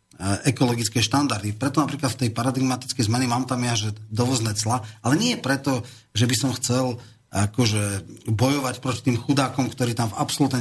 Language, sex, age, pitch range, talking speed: Slovak, male, 40-59, 110-135 Hz, 165 wpm